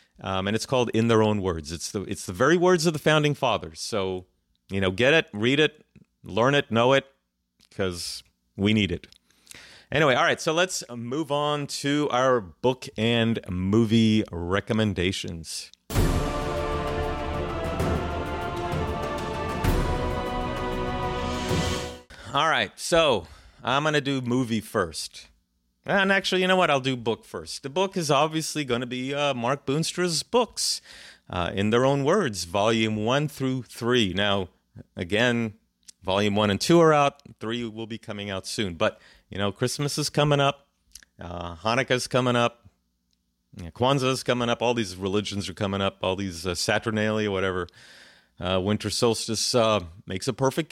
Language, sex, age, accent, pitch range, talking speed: English, male, 30-49, American, 85-130 Hz, 155 wpm